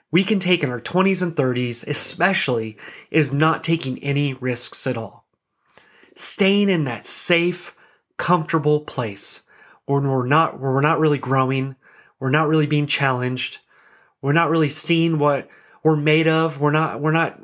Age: 30-49